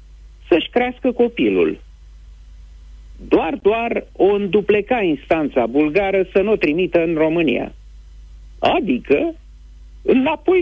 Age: 50-69